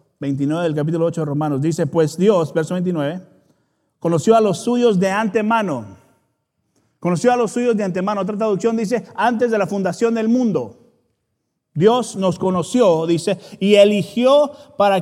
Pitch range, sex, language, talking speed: 150-215 Hz, male, Spanish, 155 wpm